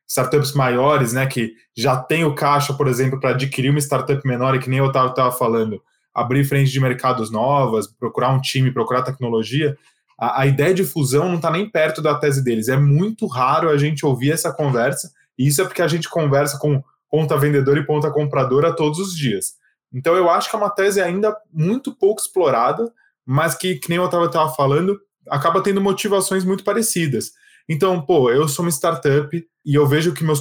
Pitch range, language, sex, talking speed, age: 130-170 Hz, Portuguese, male, 205 wpm, 10-29